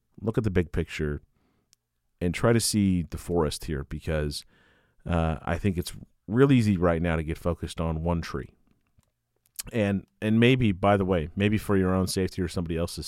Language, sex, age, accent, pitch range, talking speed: English, male, 40-59, American, 85-115 Hz, 190 wpm